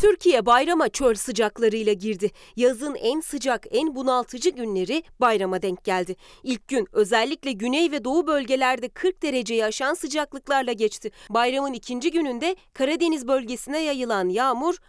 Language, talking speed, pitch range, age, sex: Turkish, 135 wpm, 210-270 Hz, 30-49, female